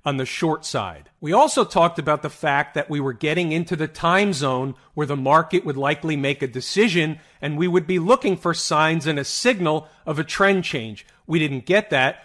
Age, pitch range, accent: 40-59, 145-195 Hz, American